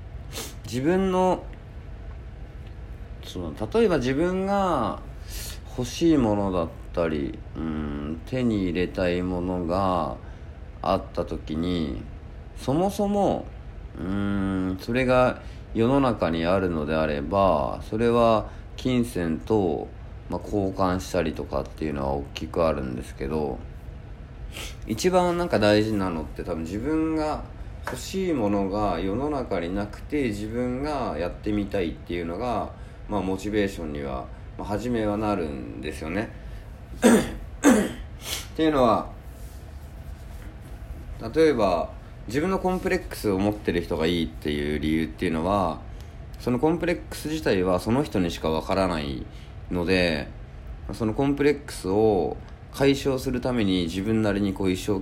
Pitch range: 80-125 Hz